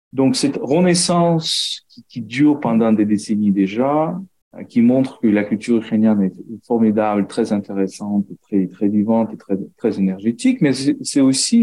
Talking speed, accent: 155 wpm, French